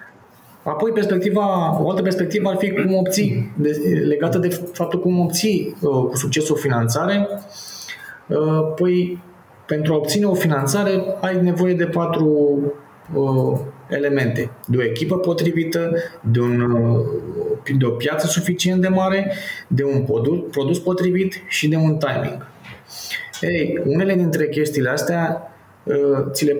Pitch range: 135-180 Hz